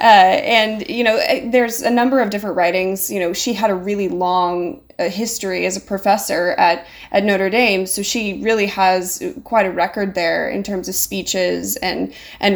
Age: 20-39